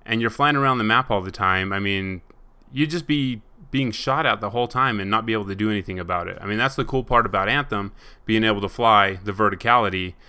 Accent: American